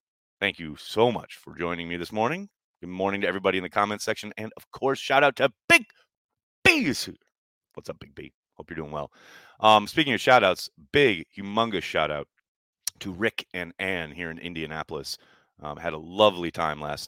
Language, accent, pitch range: English, American, 75-105 Hz